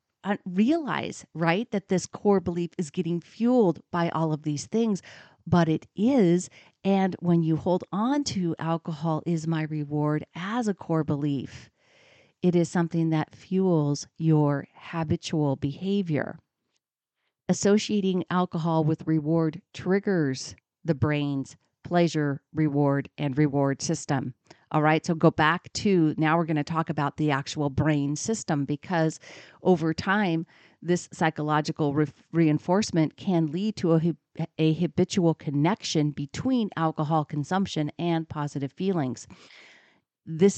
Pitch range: 155-190 Hz